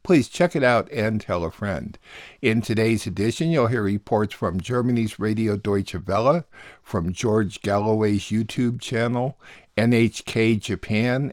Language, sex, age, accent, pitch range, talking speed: English, male, 60-79, American, 95-115 Hz, 140 wpm